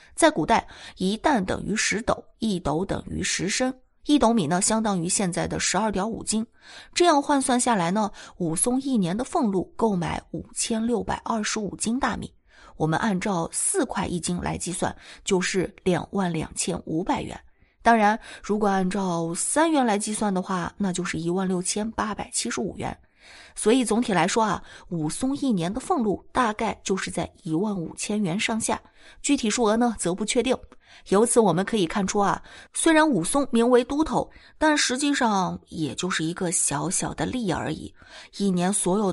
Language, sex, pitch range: Chinese, female, 180-240 Hz